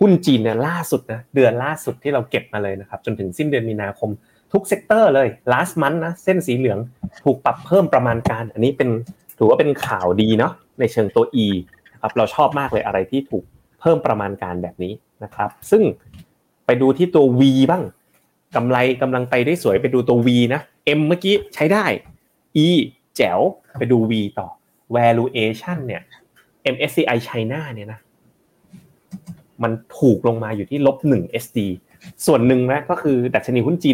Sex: male